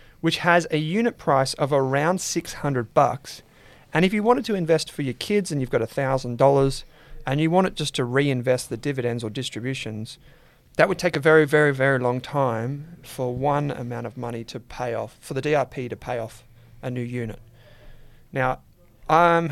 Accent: Australian